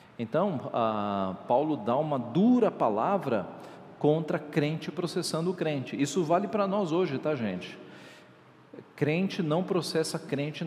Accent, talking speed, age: Brazilian, 130 wpm, 40-59